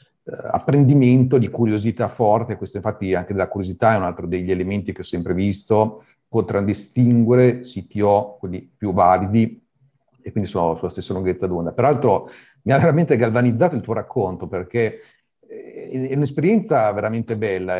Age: 50-69